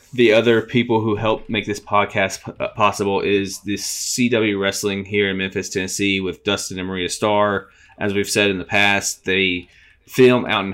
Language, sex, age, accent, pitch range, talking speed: English, male, 20-39, American, 95-105 Hz, 185 wpm